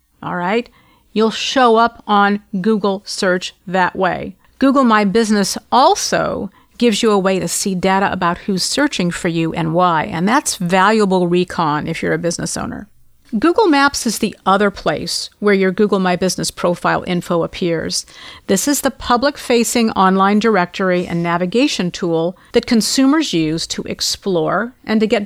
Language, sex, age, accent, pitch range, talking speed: English, female, 50-69, American, 180-240 Hz, 160 wpm